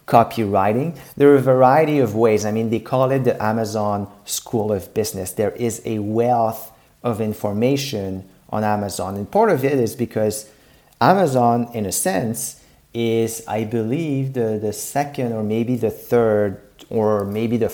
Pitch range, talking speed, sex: 105-130 Hz, 160 wpm, male